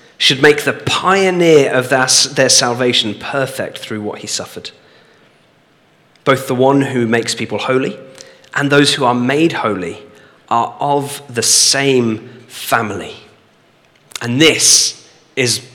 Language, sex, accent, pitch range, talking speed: English, male, British, 115-145 Hz, 125 wpm